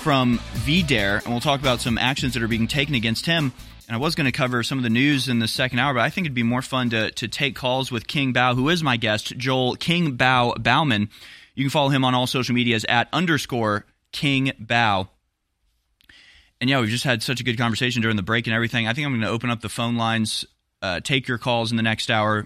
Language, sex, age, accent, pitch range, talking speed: English, male, 20-39, American, 115-140 Hz, 250 wpm